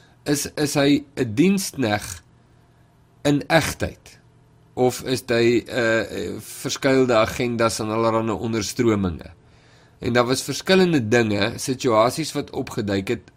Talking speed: 110 wpm